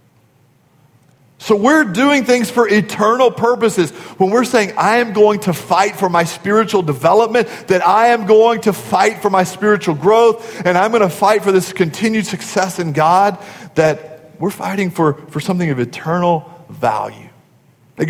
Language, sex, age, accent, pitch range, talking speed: English, male, 40-59, American, 150-195 Hz, 165 wpm